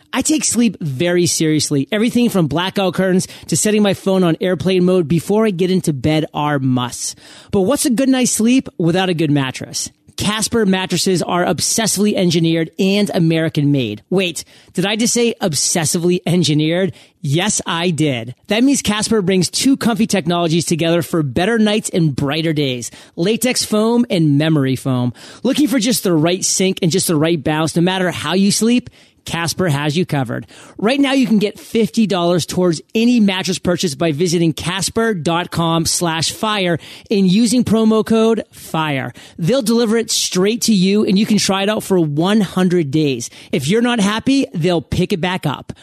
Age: 30-49